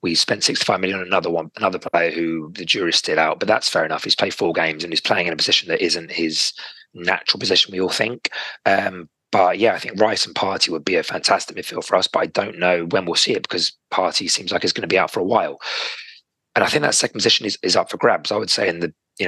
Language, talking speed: English, 275 wpm